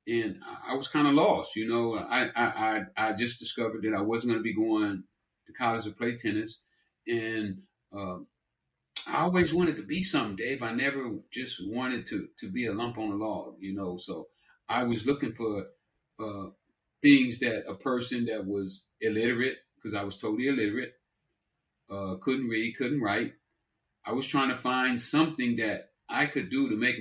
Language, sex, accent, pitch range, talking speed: English, male, American, 105-125 Hz, 185 wpm